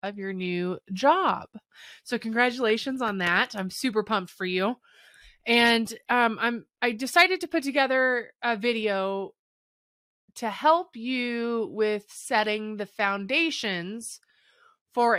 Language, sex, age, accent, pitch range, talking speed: English, female, 20-39, American, 205-265 Hz, 125 wpm